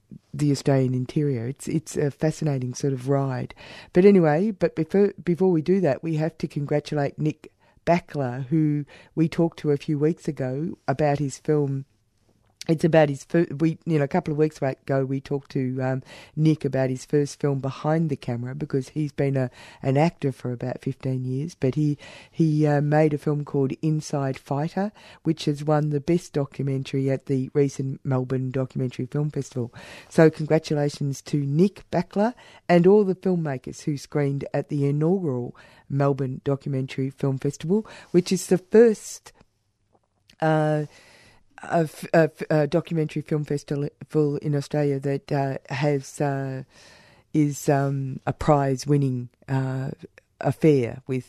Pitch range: 135-155 Hz